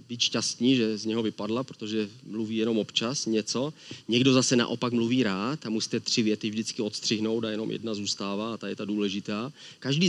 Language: Czech